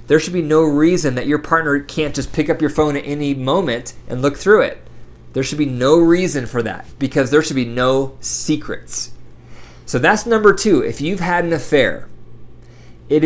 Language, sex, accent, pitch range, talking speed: English, male, American, 125-165 Hz, 200 wpm